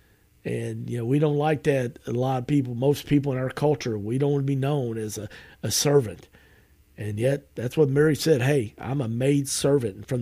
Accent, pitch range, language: American, 125-170 Hz, English